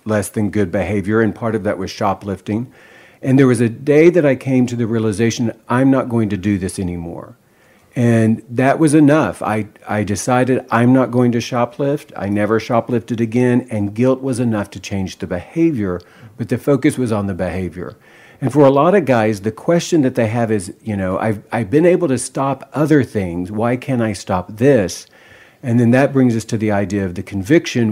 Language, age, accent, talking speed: English, 50-69, American, 210 wpm